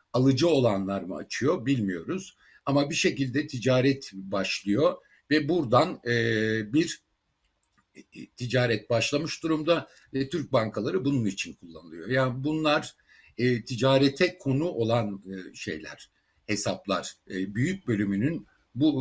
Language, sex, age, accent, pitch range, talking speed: Turkish, male, 60-79, native, 105-140 Hz, 115 wpm